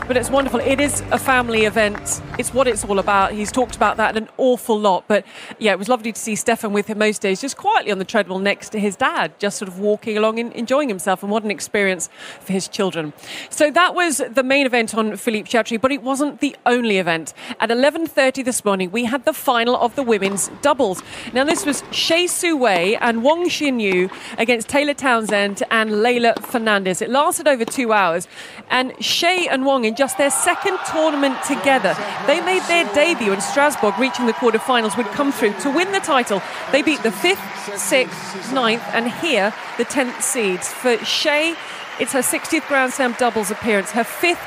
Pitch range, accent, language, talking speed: 215-275 Hz, British, French, 205 wpm